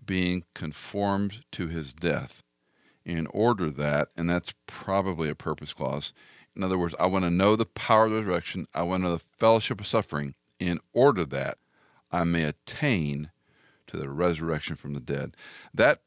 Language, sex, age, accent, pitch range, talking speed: English, male, 50-69, American, 80-100 Hz, 170 wpm